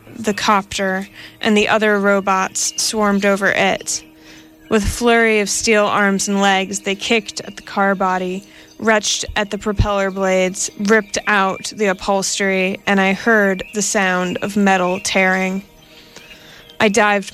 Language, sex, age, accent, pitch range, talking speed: English, female, 20-39, American, 190-215 Hz, 145 wpm